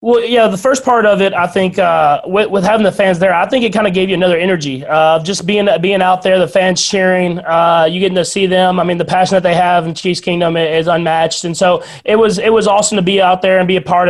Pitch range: 170-195 Hz